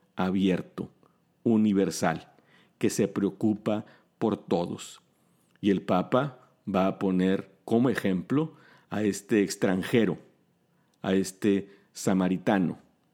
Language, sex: Spanish, male